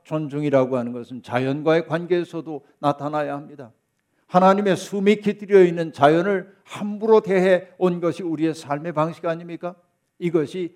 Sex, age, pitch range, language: male, 50-69, 145-185 Hz, Korean